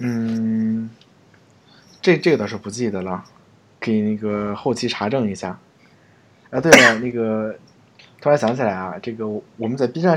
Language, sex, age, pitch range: Chinese, male, 20-39, 100-120 Hz